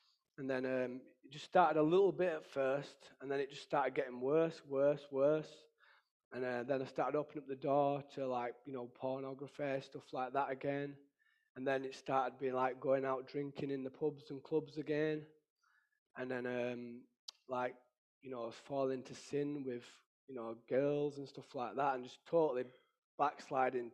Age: 20-39